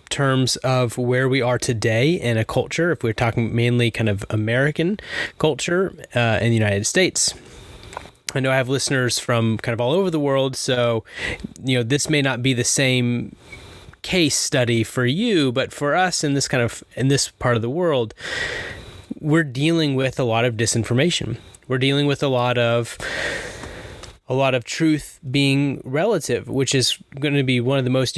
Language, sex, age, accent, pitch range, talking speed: English, male, 20-39, American, 115-145 Hz, 185 wpm